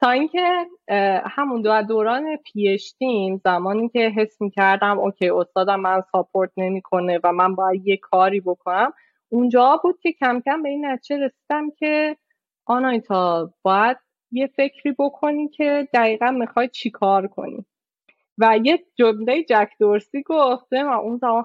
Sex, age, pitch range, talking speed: female, 20-39, 190-270 Hz, 145 wpm